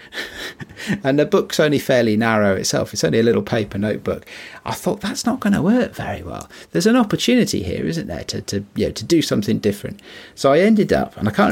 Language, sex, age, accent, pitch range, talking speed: English, male, 40-59, British, 90-125 Hz, 225 wpm